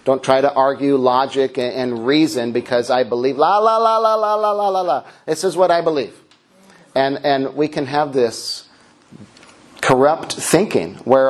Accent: American